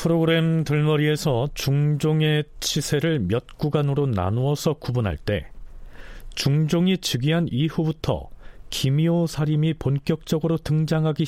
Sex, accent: male, native